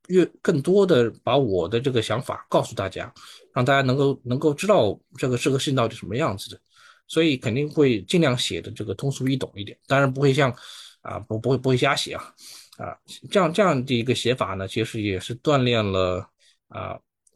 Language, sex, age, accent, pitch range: Chinese, male, 20-39, native, 105-140 Hz